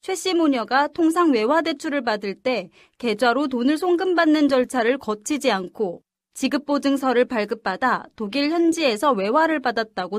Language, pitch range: Korean, 230-310 Hz